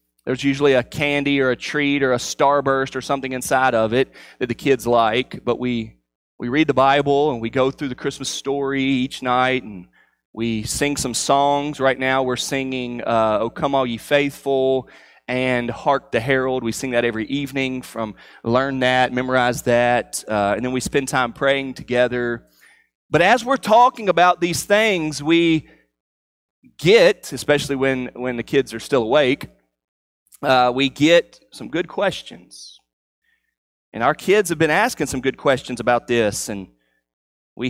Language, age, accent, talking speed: English, 30-49, American, 170 wpm